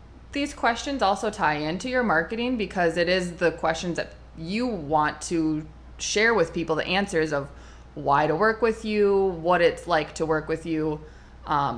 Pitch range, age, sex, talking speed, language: 160-205 Hz, 20-39, female, 180 wpm, English